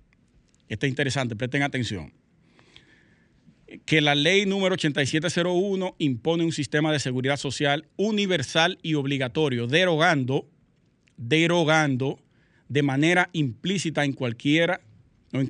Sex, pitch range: male, 135-165 Hz